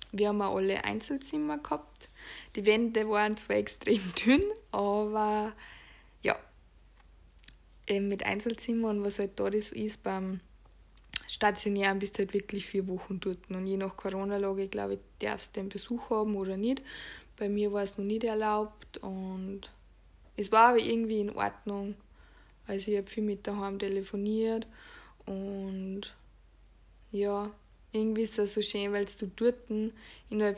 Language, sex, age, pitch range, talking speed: German, female, 20-39, 195-215 Hz, 150 wpm